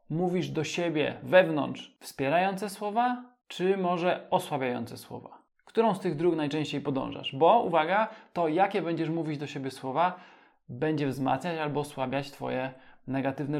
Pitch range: 135-170 Hz